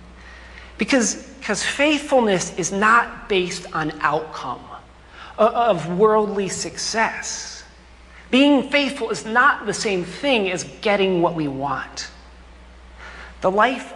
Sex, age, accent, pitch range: male, 40-59, American, 160-220 Hz